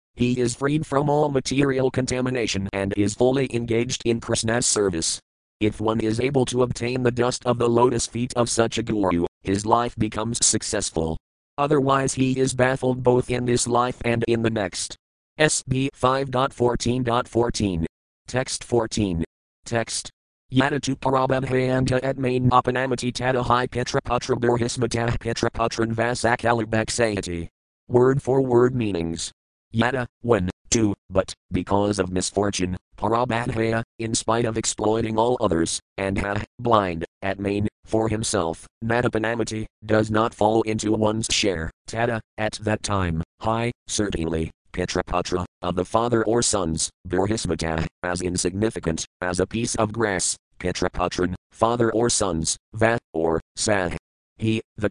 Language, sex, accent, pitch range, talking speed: English, male, American, 95-120 Hz, 120 wpm